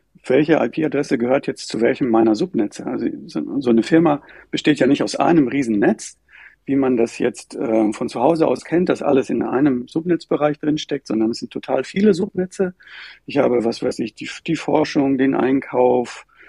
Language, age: German, 50-69